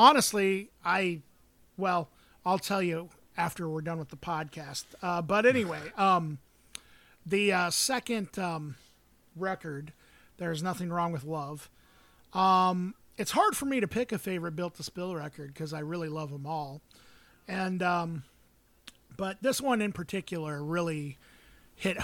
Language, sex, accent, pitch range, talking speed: English, male, American, 155-190 Hz, 145 wpm